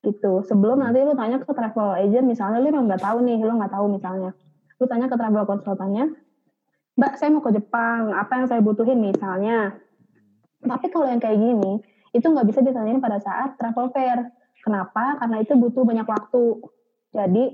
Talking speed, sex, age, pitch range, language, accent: 180 wpm, female, 20-39, 210-265 Hz, Indonesian, native